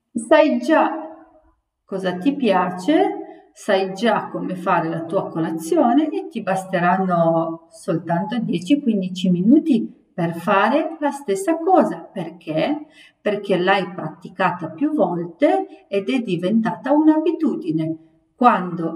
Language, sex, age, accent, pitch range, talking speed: Italian, female, 50-69, native, 175-290 Hz, 110 wpm